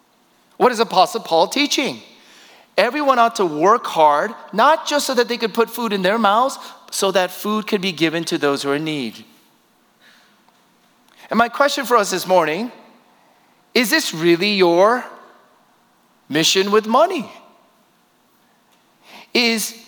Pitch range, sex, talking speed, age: 150-225 Hz, male, 145 wpm, 40-59